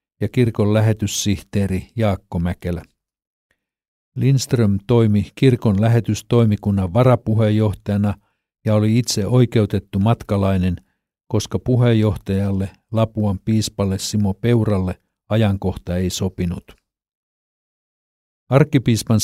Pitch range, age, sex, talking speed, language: 100-115 Hz, 50-69, male, 80 wpm, Finnish